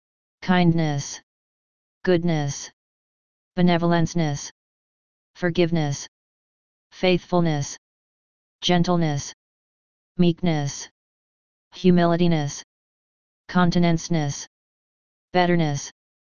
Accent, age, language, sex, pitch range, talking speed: American, 30-49, English, female, 150-175 Hz, 35 wpm